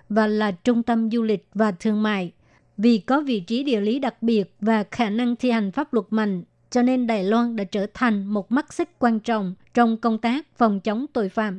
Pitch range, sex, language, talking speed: 215-245 Hz, male, Vietnamese, 230 wpm